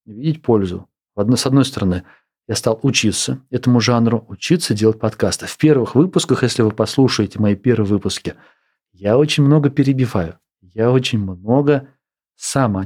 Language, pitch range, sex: Russian, 100-130 Hz, male